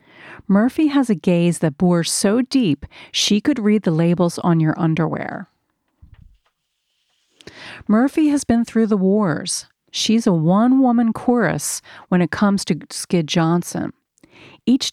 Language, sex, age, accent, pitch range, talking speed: English, female, 40-59, American, 170-225 Hz, 135 wpm